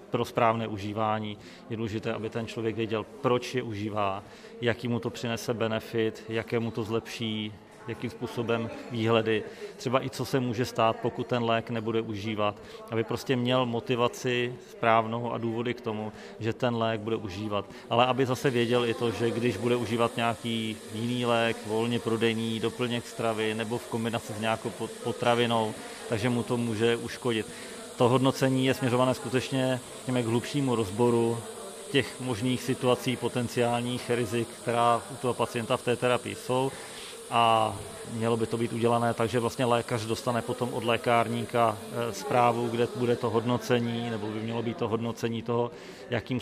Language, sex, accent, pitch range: Czech, male, native, 115-120 Hz